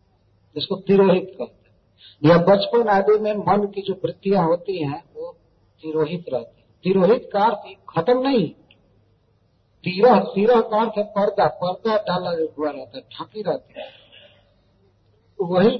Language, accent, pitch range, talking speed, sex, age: Hindi, native, 125-200 Hz, 125 wpm, male, 50-69